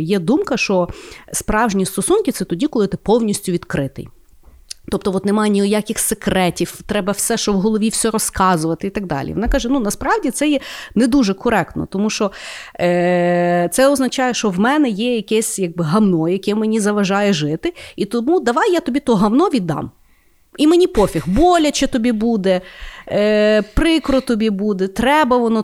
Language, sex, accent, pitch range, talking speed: Ukrainian, female, native, 185-245 Hz, 165 wpm